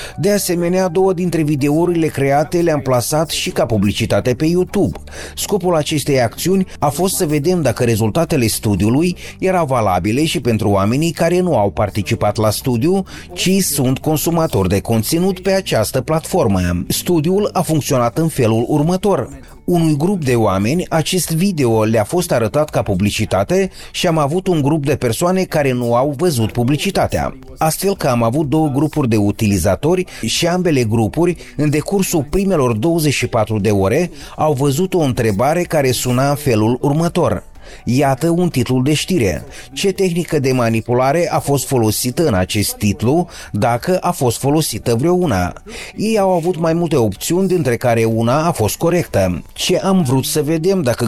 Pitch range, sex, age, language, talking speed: 115-170 Hz, male, 30-49, Romanian, 160 wpm